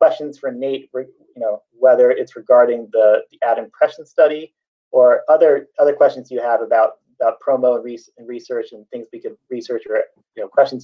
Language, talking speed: English, 185 wpm